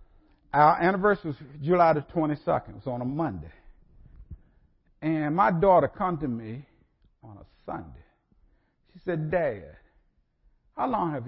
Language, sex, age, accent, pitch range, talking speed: English, male, 50-69, American, 125-195 Hz, 140 wpm